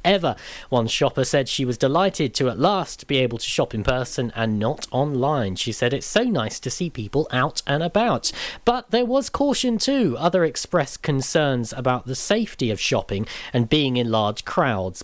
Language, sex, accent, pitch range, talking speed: English, male, British, 125-175 Hz, 190 wpm